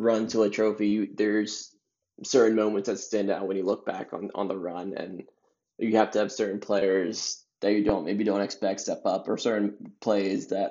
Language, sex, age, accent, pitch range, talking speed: English, male, 20-39, American, 100-115 Hz, 205 wpm